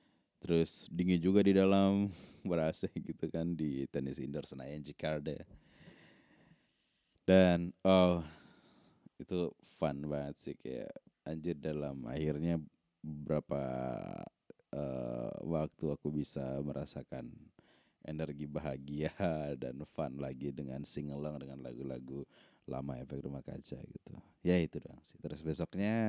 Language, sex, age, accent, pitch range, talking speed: Indonesian, male, 20-39, native, 70-85 Hz, 115 wpm